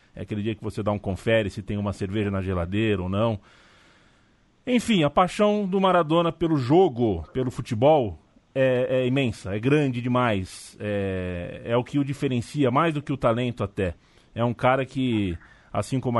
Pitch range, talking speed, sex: 110-140 Hz, 180 wpm, male